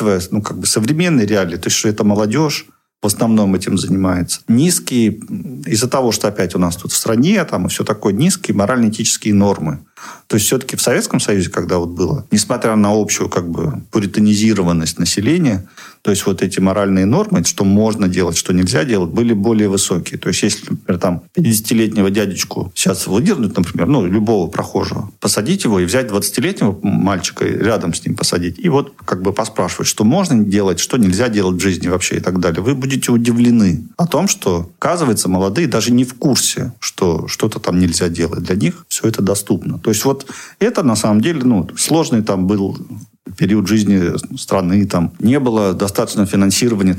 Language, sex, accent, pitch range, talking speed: Russian, male, native, 95-115 Hz, 185 wpm